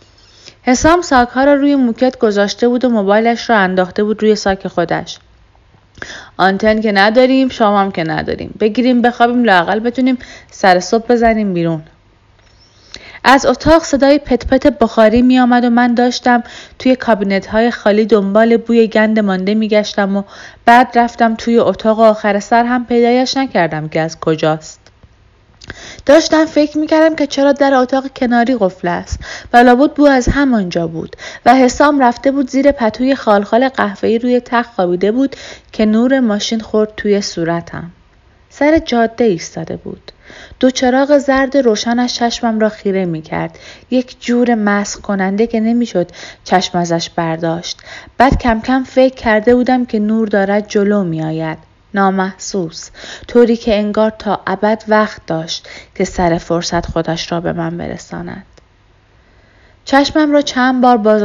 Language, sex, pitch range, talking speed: Persian, female, 175-245 Hz, 145 wpm